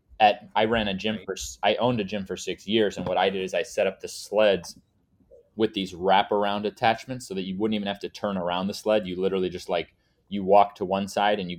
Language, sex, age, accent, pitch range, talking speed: English, male, 30-49, American, 95-115 Hz, 250 wpm